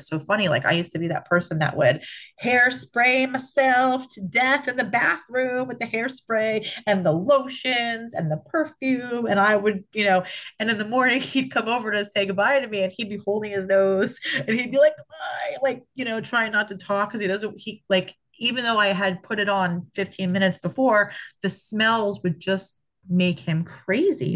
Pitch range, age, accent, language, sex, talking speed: 175-225 Hz, 30-49, American, English, female, 205 wpm